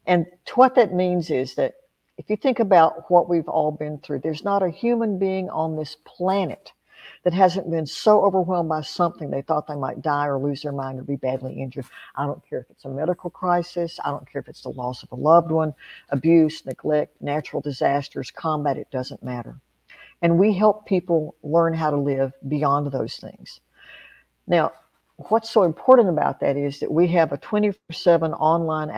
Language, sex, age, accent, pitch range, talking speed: English, female, 60-79, American, 145-180 Hz, 195 wpm